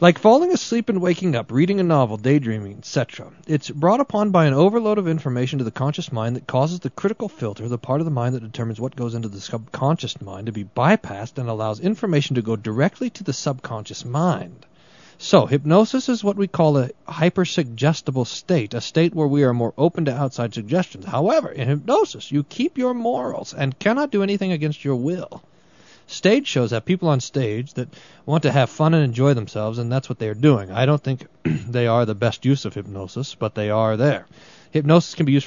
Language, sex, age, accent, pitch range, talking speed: English, male, 40-59, American, 120-170 Hz, 210 wpm